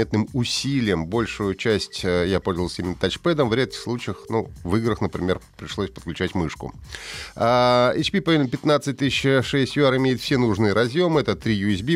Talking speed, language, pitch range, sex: 140 wpm, Russian, 95-130 Hz, male